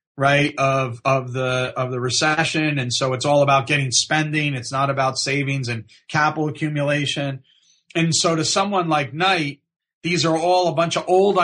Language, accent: English, American